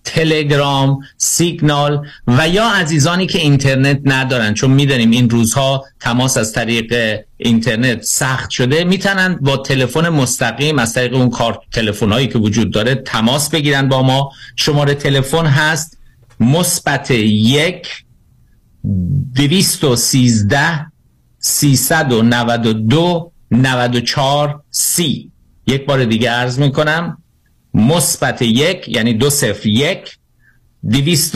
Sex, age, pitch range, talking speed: male, 50-69, 120-160 Hz, 120 wpm